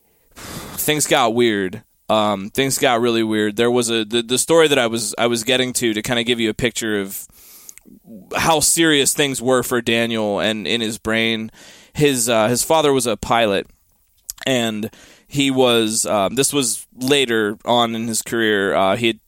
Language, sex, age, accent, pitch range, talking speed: English, male, 20-39, American, 110-130 Hz, 185 wpm